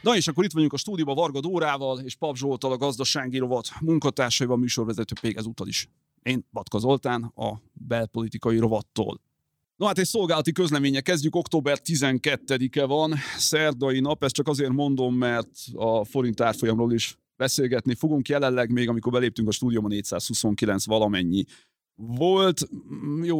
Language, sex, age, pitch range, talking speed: Hungarian, male, 30-49, 115-140 Hz, 145 wpm